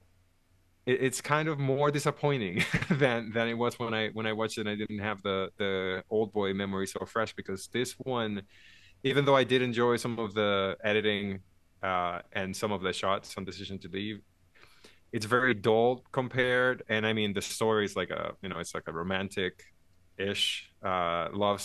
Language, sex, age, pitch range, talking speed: English, male, 20-39, 95-115 Hz, 190 wpm